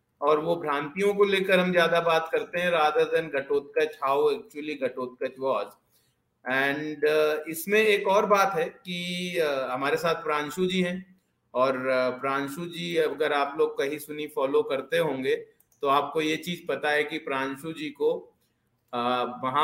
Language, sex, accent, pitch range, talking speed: Hindi, male, native, 140-180 Hz, 150 wpm